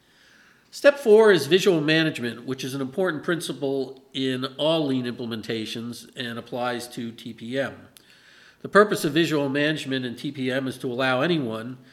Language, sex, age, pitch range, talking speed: English, male, 50-69, 120-145 Hz, 145 wpm